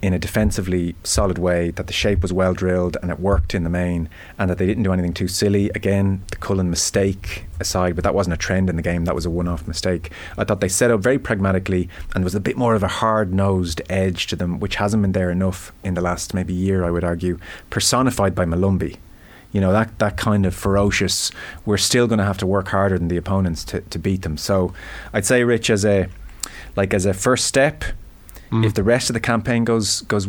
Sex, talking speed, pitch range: male, 235 wpm, 90-110 Hz